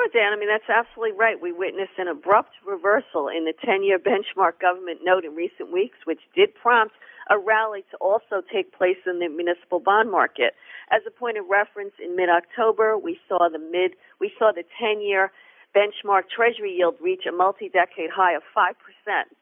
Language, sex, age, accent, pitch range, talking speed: English, female, 50-69, American, 175-230 Hz, 180 wpm